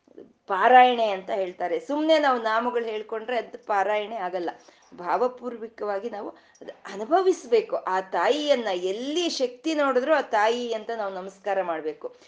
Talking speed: 115 wpm